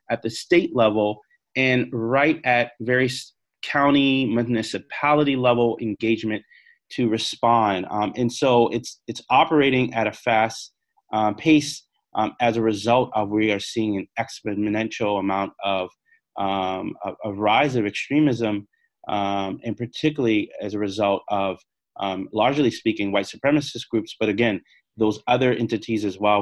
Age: 30-49